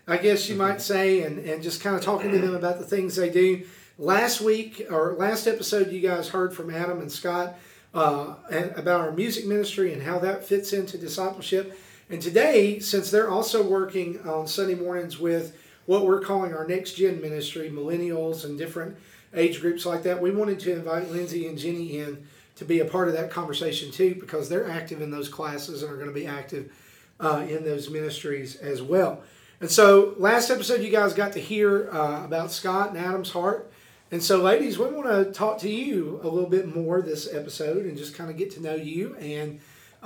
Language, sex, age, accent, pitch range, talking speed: English, male, 40-59, American, 165-195 Hz, 205 wpm